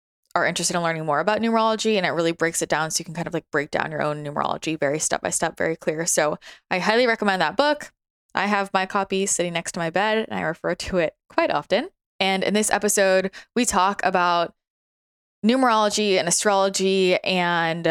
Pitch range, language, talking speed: 165-200 Hz, English, 210 wpm